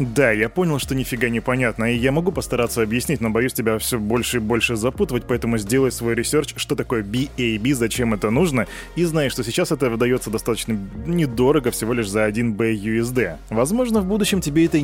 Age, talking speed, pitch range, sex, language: 20-39, 200 wpm, 115-145 Hz, male, Russian